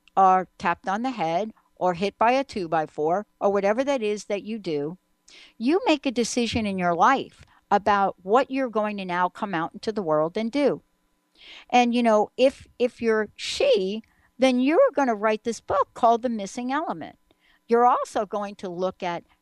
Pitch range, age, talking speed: 185-240 Hz, 60-79, 195 wpm